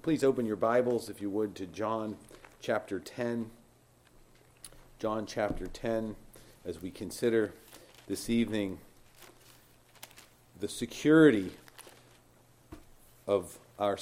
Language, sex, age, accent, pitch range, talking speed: English, male, 40-59, American, 95-120 Hz, 100 wpm